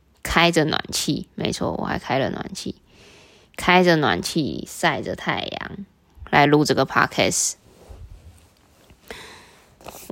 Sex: female